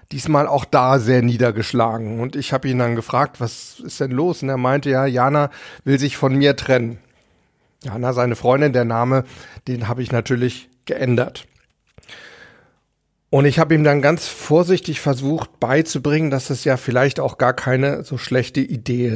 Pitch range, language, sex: 125-155 Hz, German, male